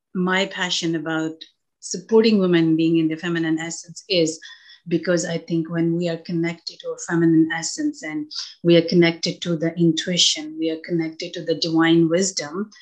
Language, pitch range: English, 160-180 Hz